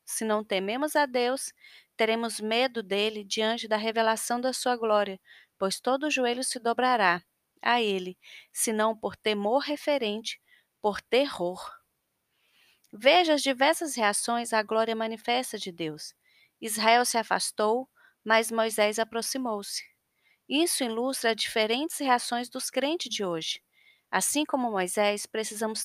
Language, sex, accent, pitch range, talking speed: Portuguese, female, Brazilian, 215-265 Hz, 130 wpm